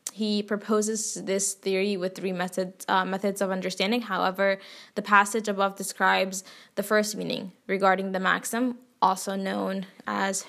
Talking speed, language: 145 wpm, English